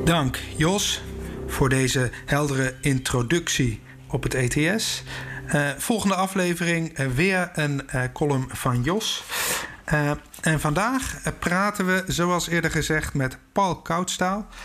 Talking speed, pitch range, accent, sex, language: 125 wpm, 135-170 Hz, Dutch, male, Dutch